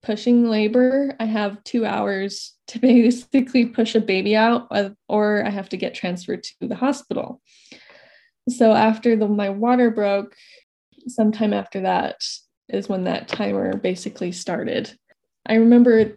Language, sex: English, female